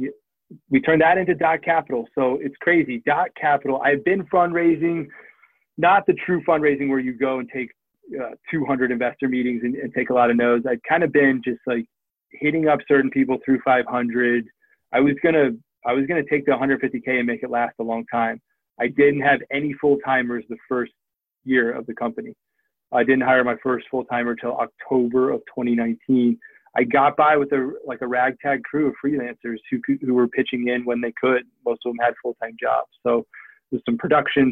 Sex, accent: male, American